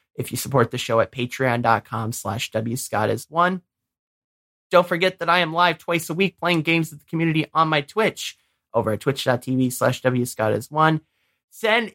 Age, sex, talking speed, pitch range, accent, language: 20-39, male, 160 wpm, 130-185 Hz, American, English